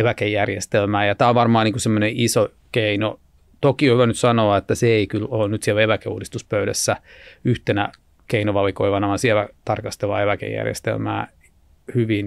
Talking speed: 130 wpm